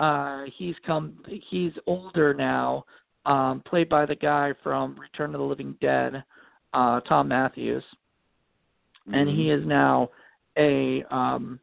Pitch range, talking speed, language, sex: 130-155 Hz, 135 wpm, English, male